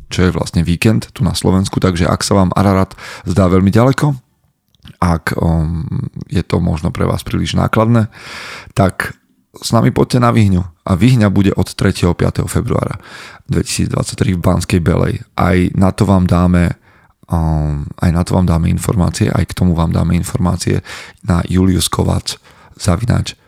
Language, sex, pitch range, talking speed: Slovak, male, 85-105 Hz, 155 wpm